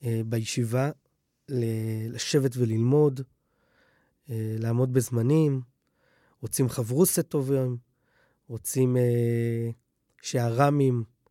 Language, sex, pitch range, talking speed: Hebrew, male, 125-180 Hz, 60 wpm